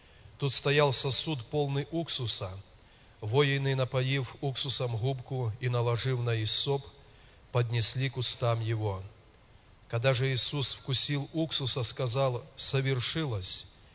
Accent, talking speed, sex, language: native, 105 wpm, male, Russian